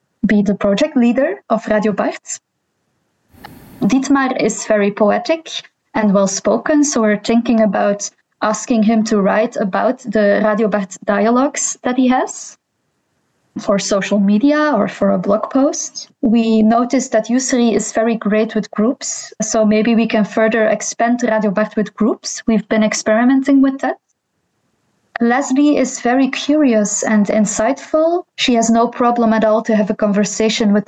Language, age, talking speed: English, 20-39, 155 wpm